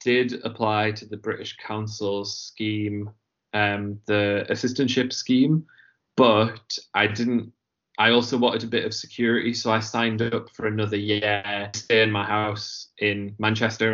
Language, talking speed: English, 145 wpm